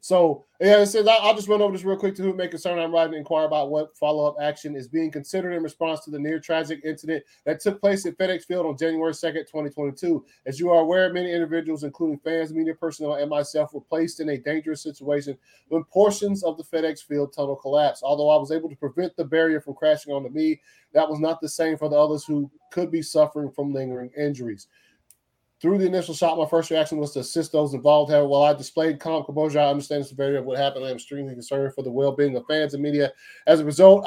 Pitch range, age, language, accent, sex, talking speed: 145-165 Hz, 20-39, English, American, male, 230 wpm